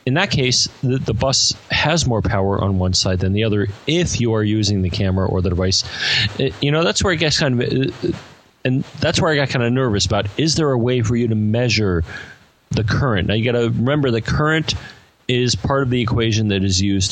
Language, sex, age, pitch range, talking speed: English, male, 40-59, 100-125 Hz, 235 wpm